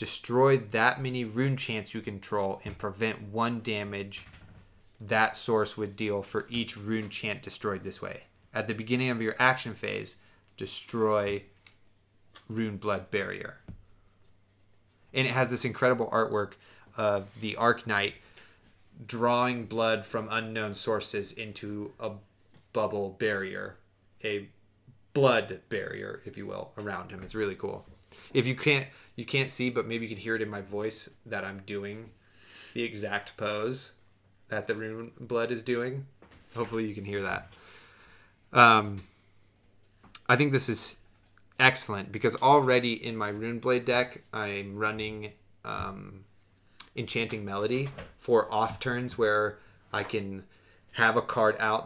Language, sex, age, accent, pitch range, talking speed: English, male, 30-49, American, 100-115 Hz, 140 wpm